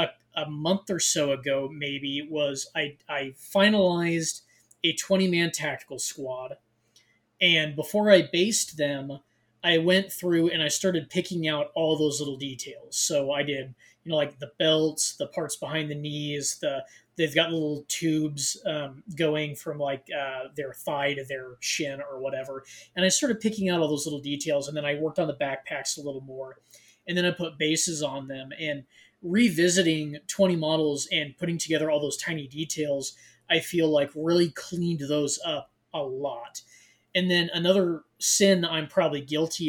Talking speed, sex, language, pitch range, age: 175 wpm, male, English, 140-170 Hz, 20-39